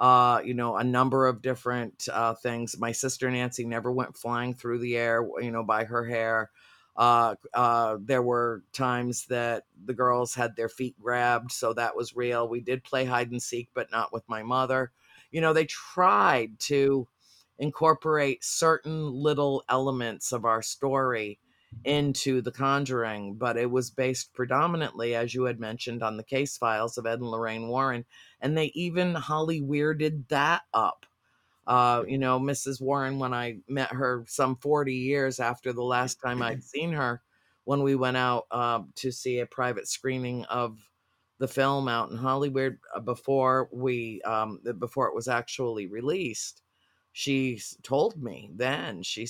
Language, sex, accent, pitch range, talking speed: English, female, American, 115-135 Hz, 170 wpm